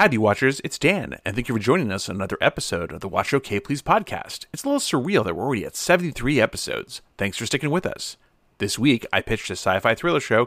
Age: 40-59